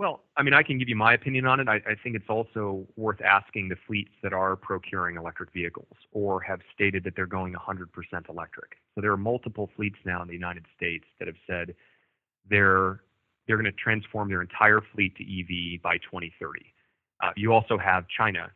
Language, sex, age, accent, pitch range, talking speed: English, male, 30-49, American, 90-110 Hz, 205 wpm